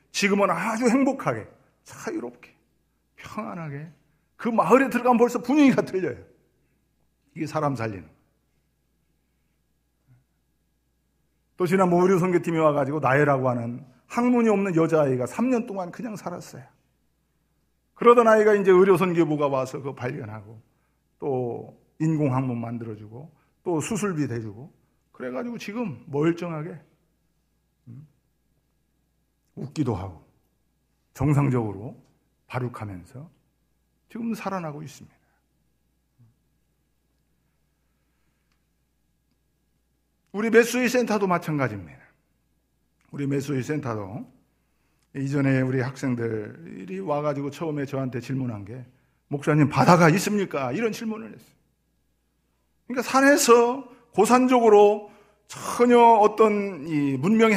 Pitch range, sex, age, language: 130-210 Hz, male, 50-69, Korean